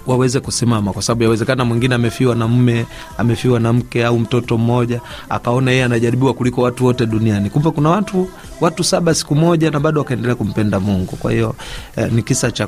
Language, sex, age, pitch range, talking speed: Swahili, male, 30-49, 110-135 Hz, 190 wpm